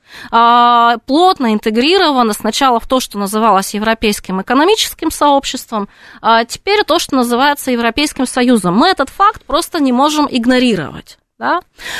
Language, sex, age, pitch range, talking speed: Russian, female, 20-39, 230-295 Hz, 125 wpm